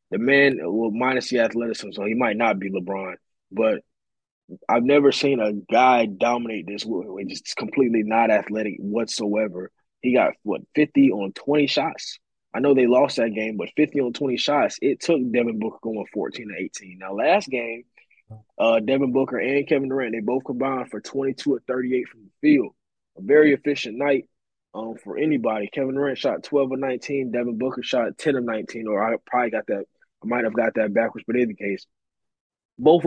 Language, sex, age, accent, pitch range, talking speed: English, male, 20-39, American, 115-140 Hz, 190 wpm